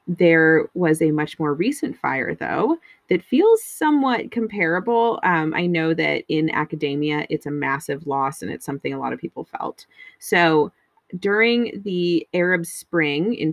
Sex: female